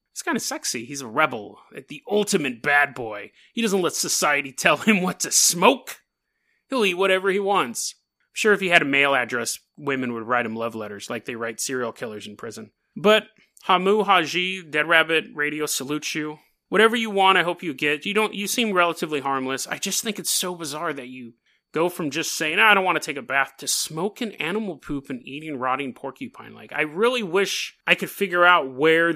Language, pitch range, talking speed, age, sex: English, 140-200 Hz, 210 wpm, 30-49, male